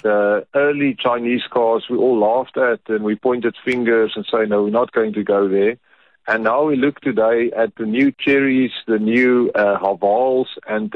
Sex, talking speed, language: male, 190 wpm, English